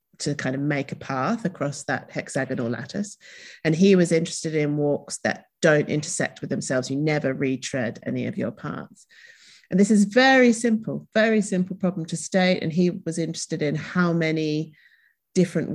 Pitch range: 145-195 Hz